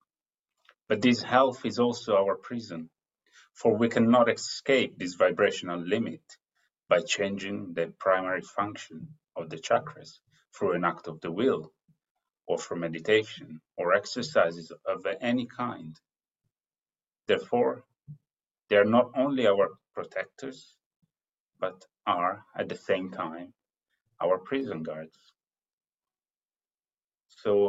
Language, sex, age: English, male, 30-49